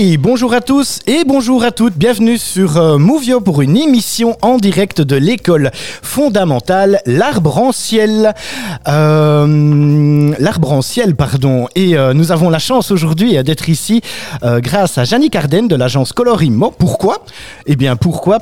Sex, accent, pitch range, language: male, French, 135-205 Hz, French